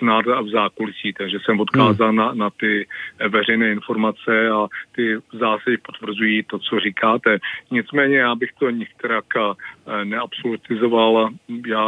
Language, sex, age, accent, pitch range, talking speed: Czech, male, 40-59, native, 110-120 Hz, 125 wpm